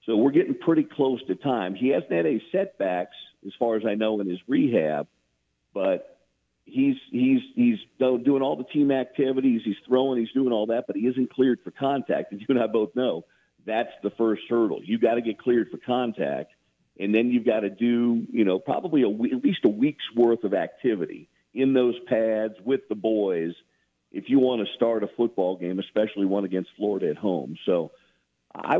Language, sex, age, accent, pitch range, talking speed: English, male, 50-69, American, 100-130 Hz, 205 wpm